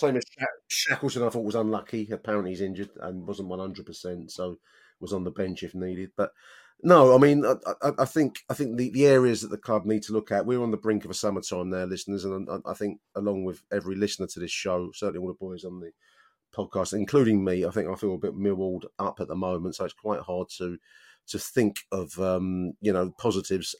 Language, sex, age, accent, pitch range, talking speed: English, male, 30-49, British, 90-110 Hz, 230 wpm